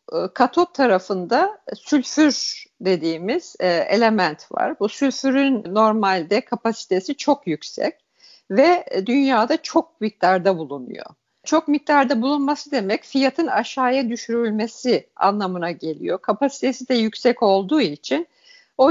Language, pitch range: Turkish, 205-290 Hz